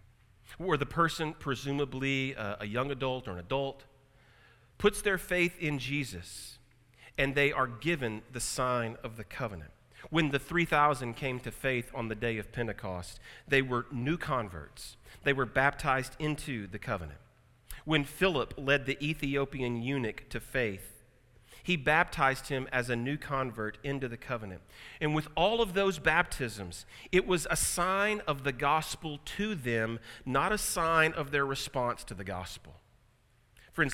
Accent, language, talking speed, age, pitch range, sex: American, English, 155 wpm, 40-59, 120-150 Hz, male